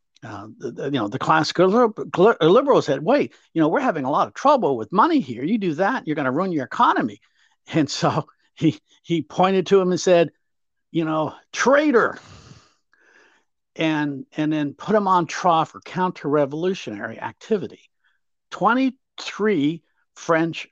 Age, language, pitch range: 50-69, English, 140-180 Hz